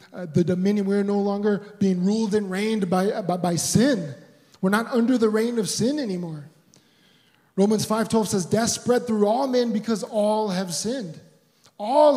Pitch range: 170-205 Hz